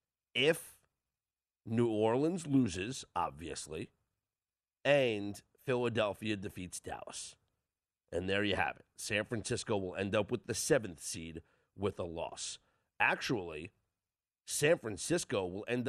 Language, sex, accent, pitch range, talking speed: English, male, American, 95-125 Hz, 115 wpm